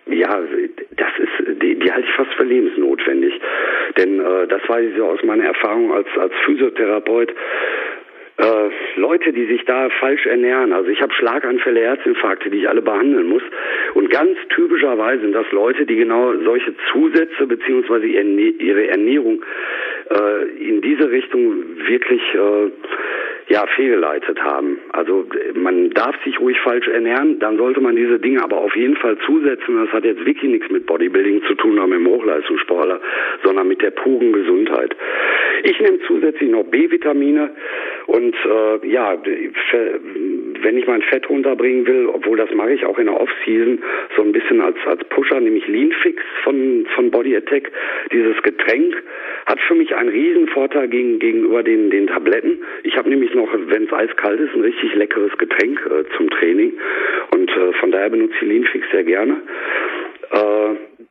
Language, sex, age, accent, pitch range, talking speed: German, male, 50-69, German, 340-400 Hz, 165 wpm